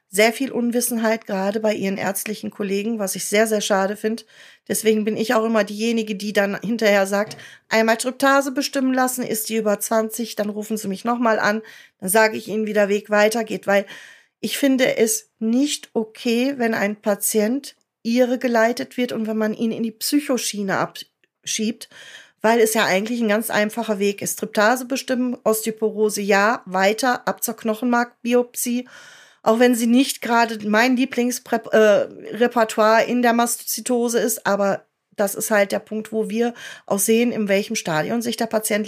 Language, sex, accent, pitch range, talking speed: German, female, German, 210-240 Hz, 170 wpm